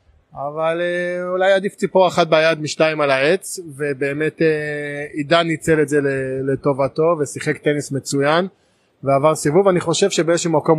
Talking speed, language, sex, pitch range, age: 135 wpm, Hebrew, male, 140-165 Hz, 20-39